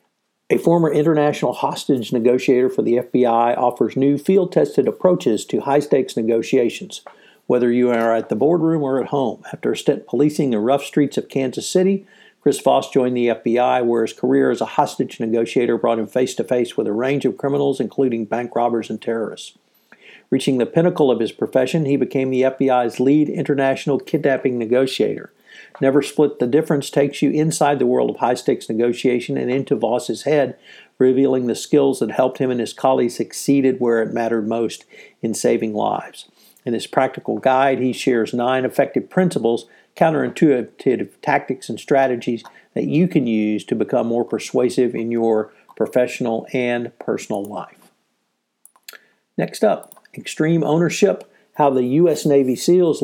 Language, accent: English, American